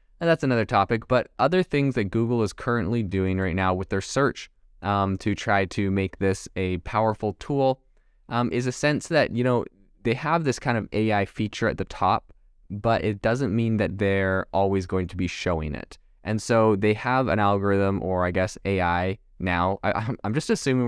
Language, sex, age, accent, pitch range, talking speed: English, male, 20-39, American, 95-115 Hz, 200 wpm